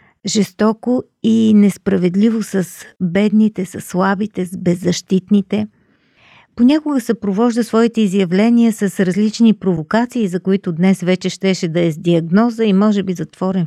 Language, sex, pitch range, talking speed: Bulgarian, female, 180-225 Hz, 130 wpm